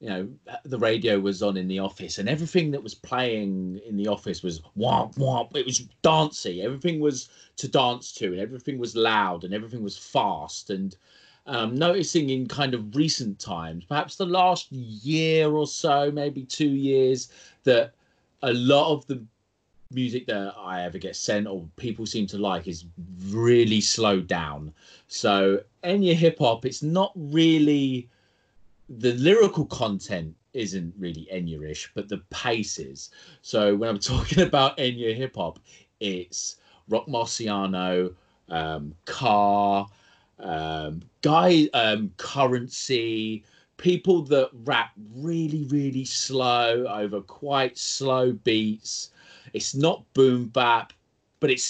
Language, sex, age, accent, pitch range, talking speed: English, male, 30-49, British, 100-145 Hz, 140 wpm